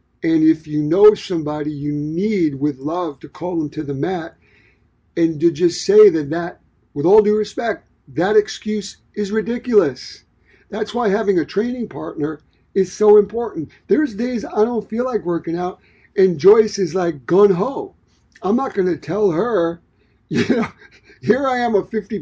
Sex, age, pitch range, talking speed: male, 60-79, 160-220 Hz, 170 wpm